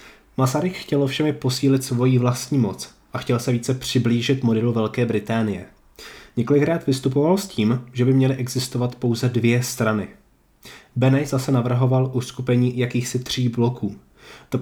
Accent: native